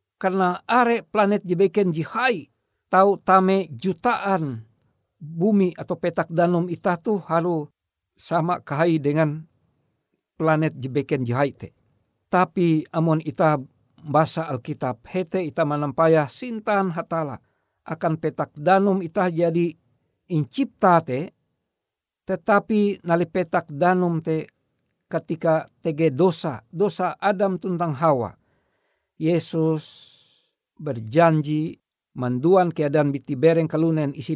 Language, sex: Indonesian, male